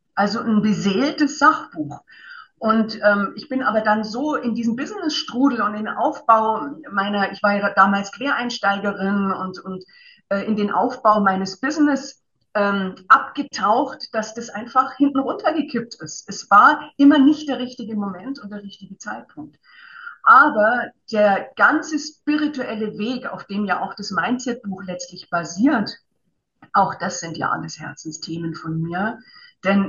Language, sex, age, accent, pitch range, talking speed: German, female, 50-69, German, 195-255 Hz, 145 wpm